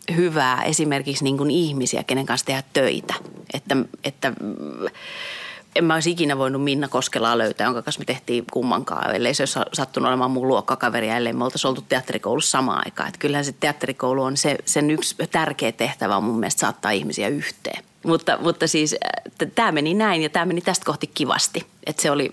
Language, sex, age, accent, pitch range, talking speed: Finnish, female, 30-49, native, 130-150 Hz, 175 wpm